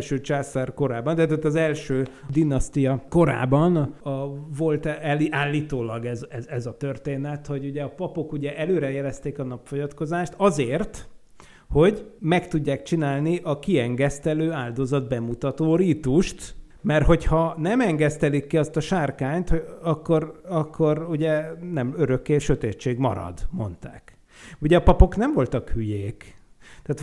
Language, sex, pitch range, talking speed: Hungarian, male, 135-165 Hz, 130 wpm